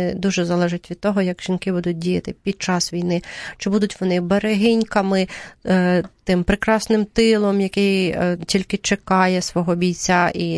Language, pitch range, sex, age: Ukrainian, 175-200 Hz, female, 30-49